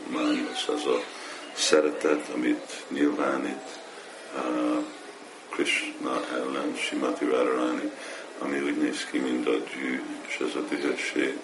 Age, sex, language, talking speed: 50-69, male, Hungarian, 110 wpm